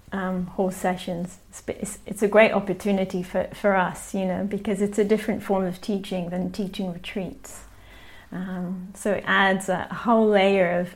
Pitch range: 180-200 Hz